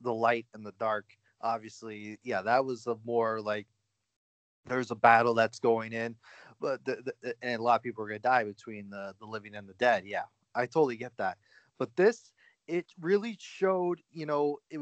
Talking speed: 200 wpm